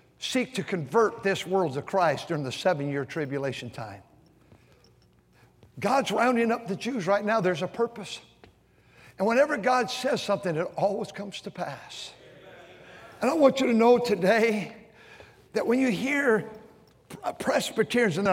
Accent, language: American, English